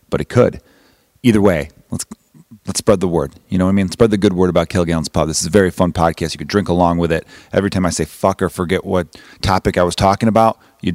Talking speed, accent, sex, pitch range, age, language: 270 wpm, American, male, 85-115 Hz, 30-49, English